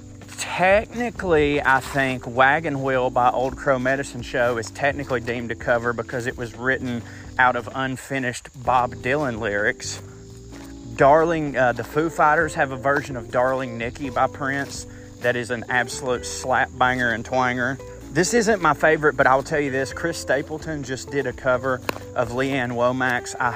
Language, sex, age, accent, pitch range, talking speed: English, male, 30-49, American, 115-140 Hz, 165 wpm